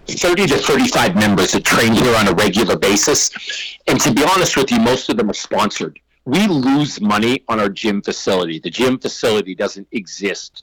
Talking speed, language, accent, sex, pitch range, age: 190 wpm, English, American, male, 105-130 Hz, 40-59